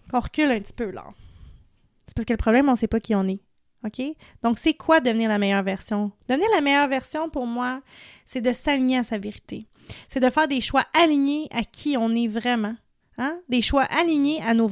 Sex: female